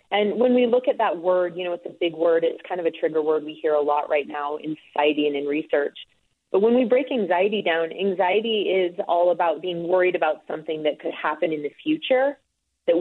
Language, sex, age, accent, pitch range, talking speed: English, female, 30-49, American, 160-205 Hz, 235 wpm